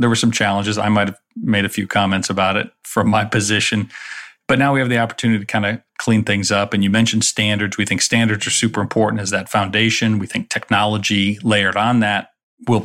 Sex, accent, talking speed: male, American, 225 wpm